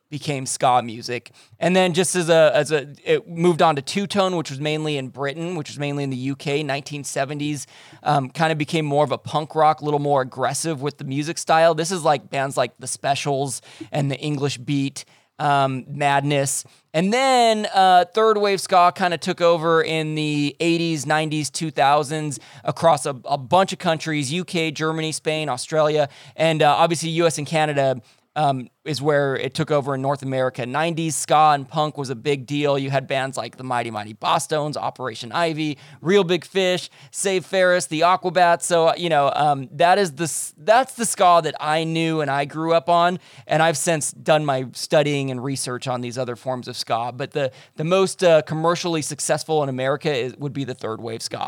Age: 20-39